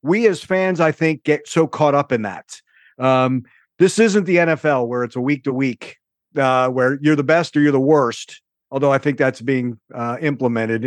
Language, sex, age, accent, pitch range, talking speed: English, male, 50-69, American, 130-180 Hz, 195 wpm